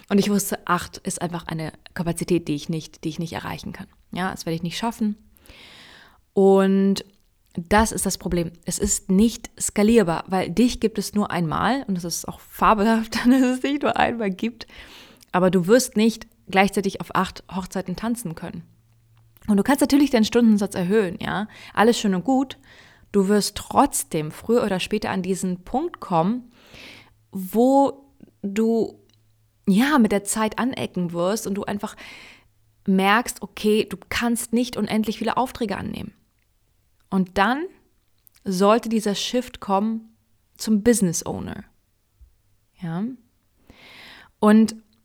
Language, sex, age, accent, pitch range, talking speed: German, female, 20-39, German, 175-220 Hz, 150 wpm